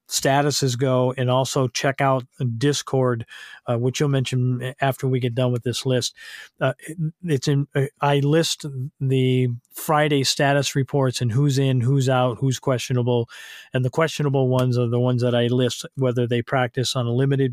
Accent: American